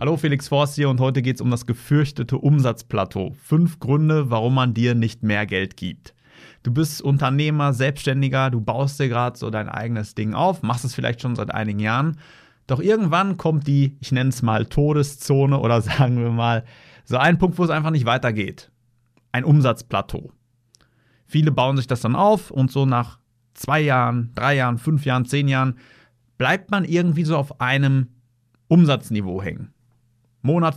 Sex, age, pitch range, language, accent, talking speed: male, 30-49, 115-145 Hz, German, German, 175 wpm